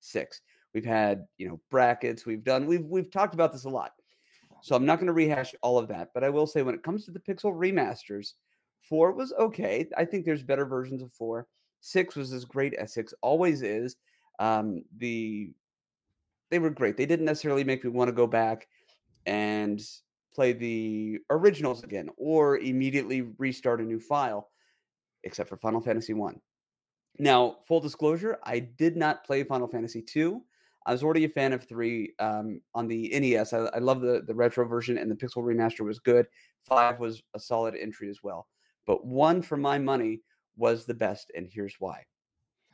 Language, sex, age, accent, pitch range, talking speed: English, male, 30-49, American, 115-150 Hz, 190 wpm